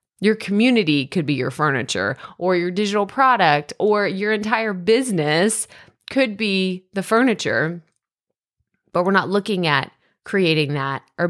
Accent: American